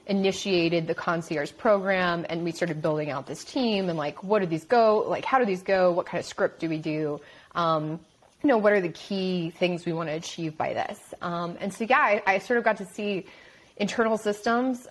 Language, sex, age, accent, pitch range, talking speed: English, female, 30-49, American, 170-205 Hz, 225 wpm